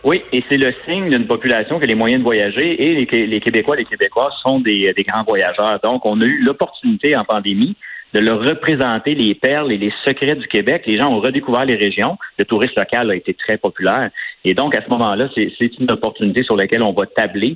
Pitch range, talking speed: 100-125 Hz, 230 wpm